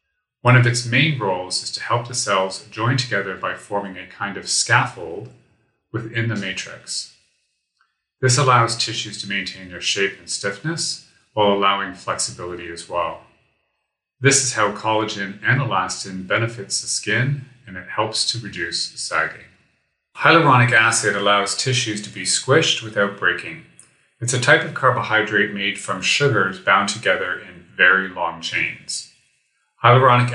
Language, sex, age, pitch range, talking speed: English, male, 30-49, 100-125 Hz, 145 wpm